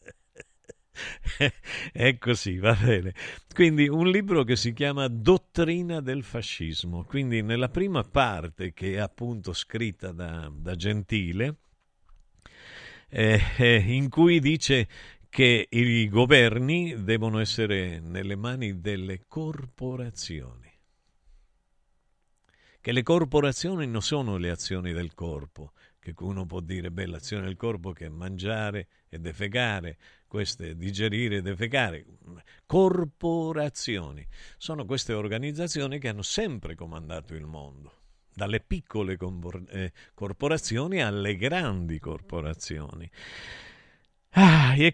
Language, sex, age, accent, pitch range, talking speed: Italian, male, 50-69, native, 90-135 Hz, 110 wpm